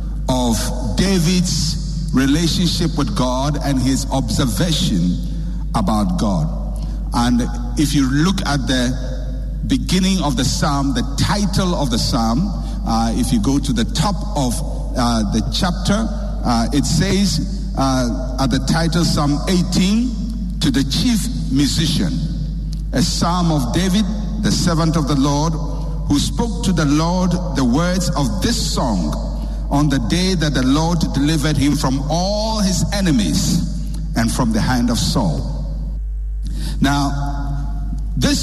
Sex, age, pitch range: male, 60-79, 140-180 Hz